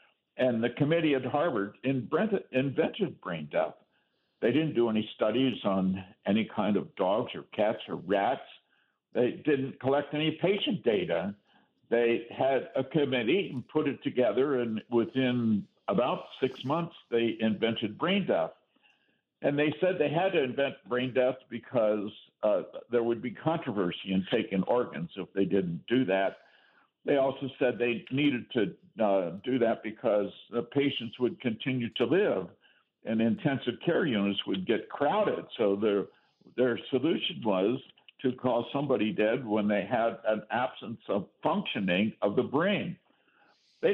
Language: English